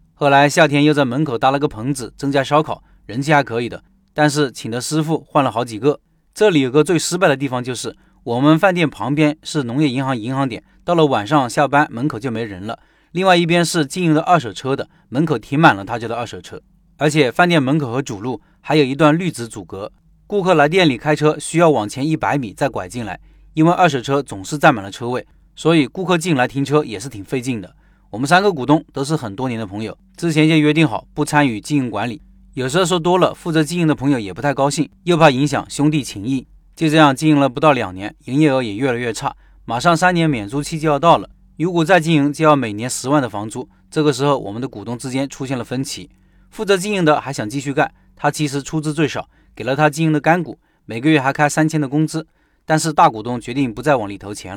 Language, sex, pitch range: Chinese, male, 130-155 Hz